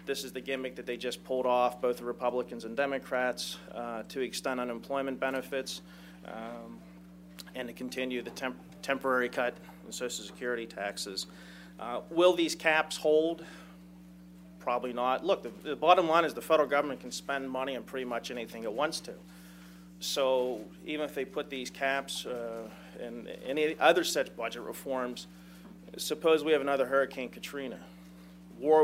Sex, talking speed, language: male, 160 wpm, English